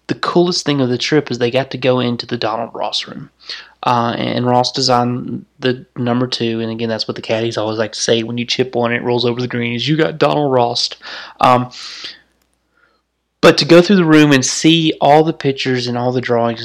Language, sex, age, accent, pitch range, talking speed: English, male, 20-39, American, 120-135 Hz, 225 wpm